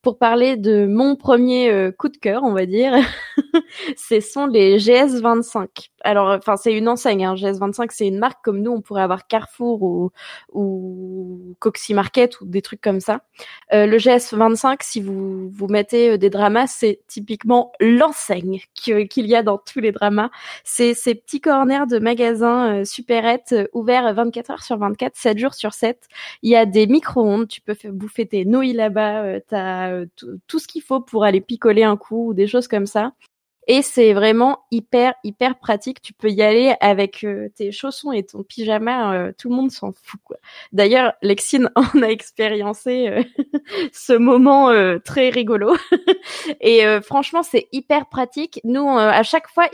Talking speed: 185 wpm